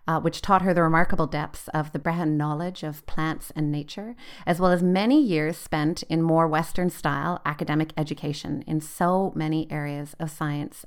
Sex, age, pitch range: female, 30-49, 155-180 Hz